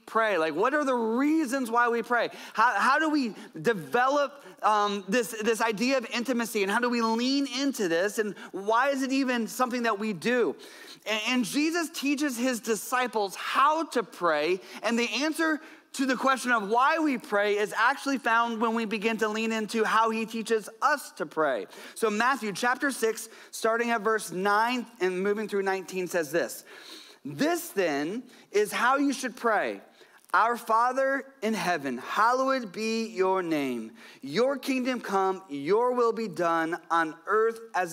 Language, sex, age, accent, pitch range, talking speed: English, male, 30-49, American, 180-255 Hz, 170 wpm